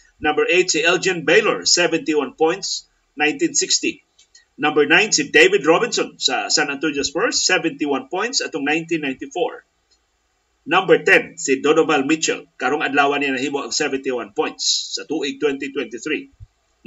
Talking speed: 130 wpm